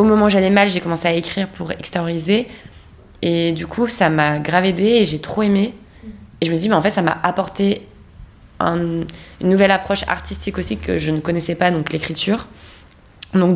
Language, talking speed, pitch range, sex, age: French, 210 wpm, 150-190 Hz, female, 20-39